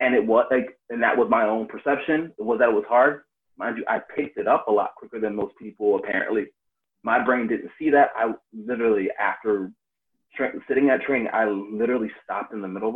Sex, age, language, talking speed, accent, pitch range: male, 30-49, English, 220 wpm, American, 110-155 Hz